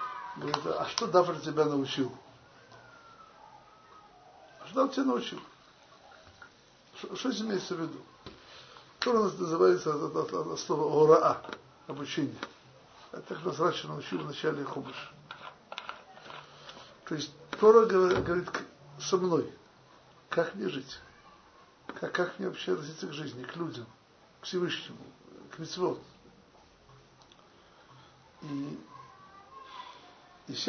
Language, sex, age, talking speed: Russian, male, 60-79, 105 wpm